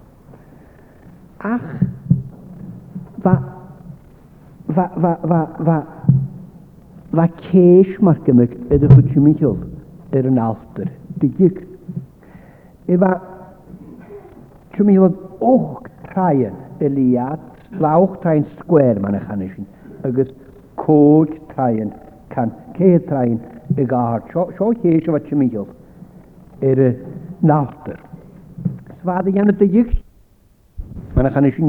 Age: 60-79